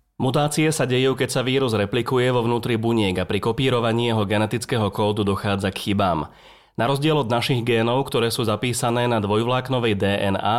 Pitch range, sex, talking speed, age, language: 105-130 Hz, male, 170 wpm, 30-49, Slovak